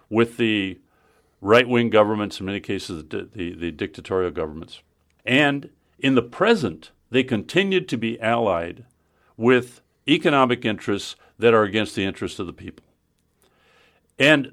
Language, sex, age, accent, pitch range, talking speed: English, male, 60-79, American, 95-125 Hz, 135 wpm